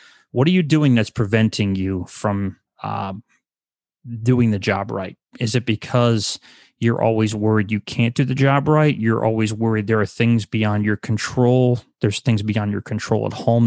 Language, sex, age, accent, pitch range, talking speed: English, male, 30-49, American, 110-125 Hz, 180 wpm